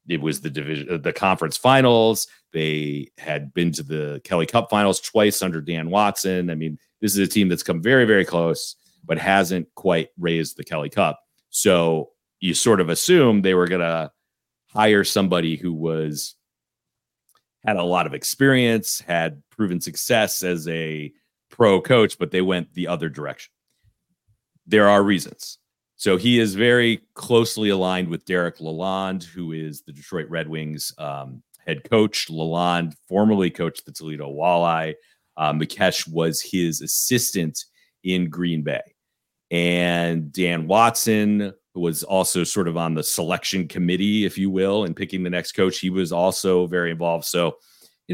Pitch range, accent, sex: 80-100 Hz, American, male